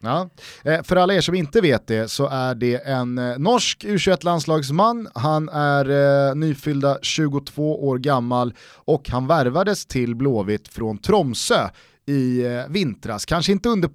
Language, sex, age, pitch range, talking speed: Swedish, male, 30-49, 120-155 Hz, 160 wpm